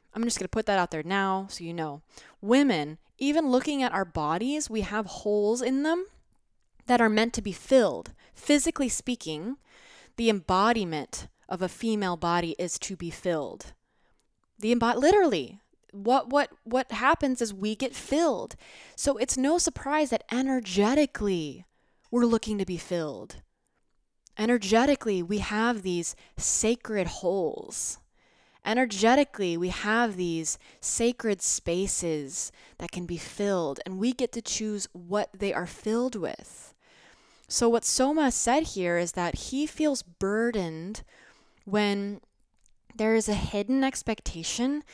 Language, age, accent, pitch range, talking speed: English, 20-39, American, 180-250 Hz, 140 wpm